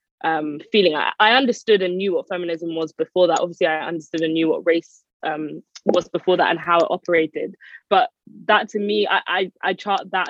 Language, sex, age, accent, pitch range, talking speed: English, female, 20-39, British, 165-200 Hz, 210 wpm